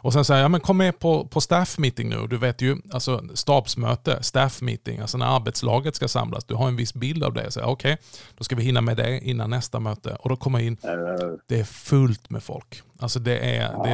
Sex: male